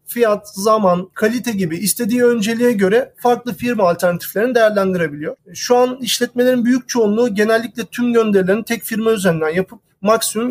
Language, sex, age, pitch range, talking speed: Turkish, male, 40-59, 195-235 Hz, 135 wpm